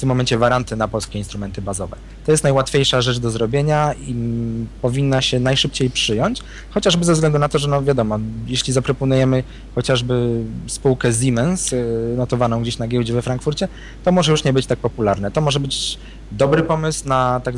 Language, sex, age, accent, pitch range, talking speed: Polish, male, 20-39, native, 110-135 Hz, 180 wpm